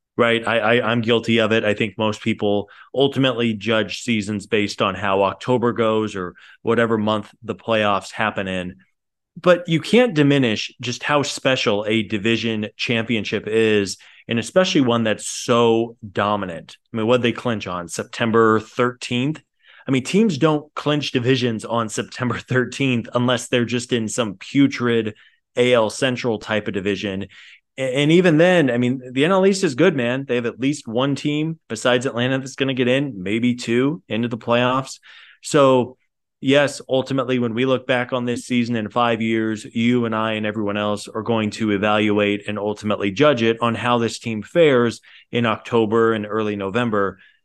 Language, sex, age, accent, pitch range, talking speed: English, male, 20-39, American, 110-130 Hz, 175 wpm